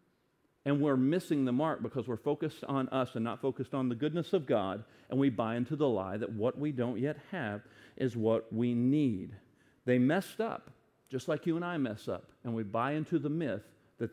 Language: English